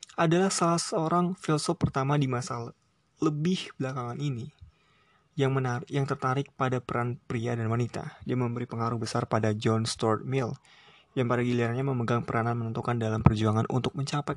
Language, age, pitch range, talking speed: Indonesian, 20-39, 120-150 Hz, 160 wpm